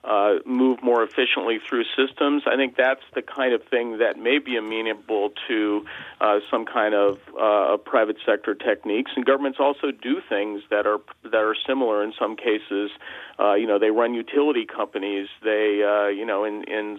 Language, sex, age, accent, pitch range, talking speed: English, male, 40-59, American, 105-130 Hz, 185 wpm